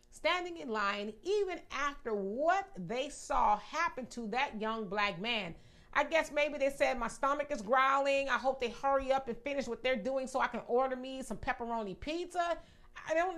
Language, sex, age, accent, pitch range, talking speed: English, female, 40-59, American, 235-300 Hz, 195 wpm